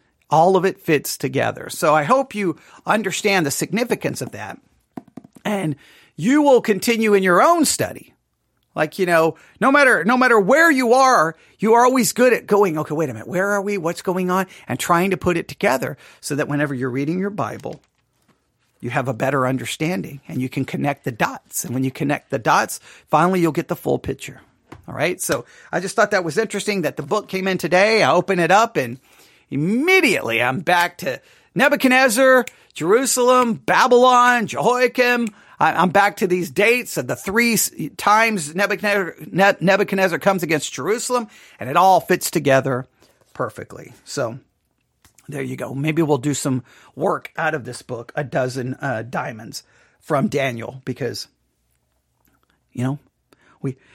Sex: male